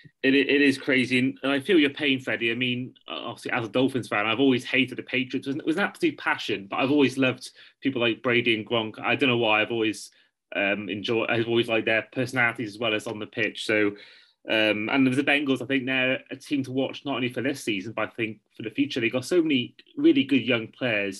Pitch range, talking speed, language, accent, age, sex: 110-135 Hz, 245 wpm, English, British, 30-49, male